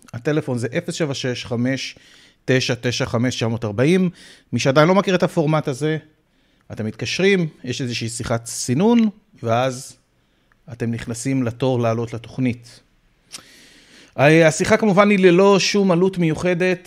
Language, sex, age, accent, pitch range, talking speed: Hebrew, male, 30-49, native, 115-155 Hz, 105 wpm